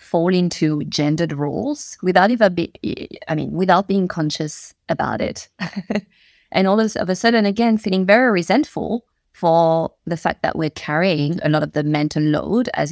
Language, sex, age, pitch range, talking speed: English, female, 20-39, 160-205 Hz, 170 wpm